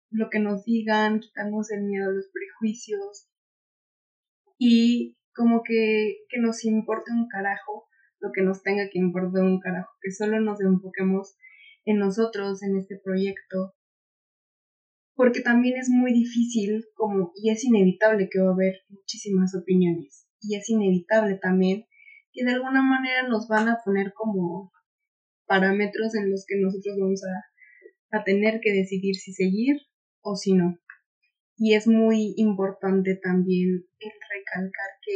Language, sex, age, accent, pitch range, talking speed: Spanish, female, 20-39, Mexican, 190-225 Hz, 150 wpm